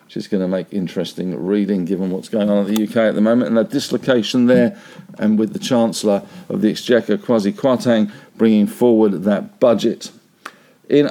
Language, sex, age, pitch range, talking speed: English, male, 50-69, 110-150 Hz, 190 wpm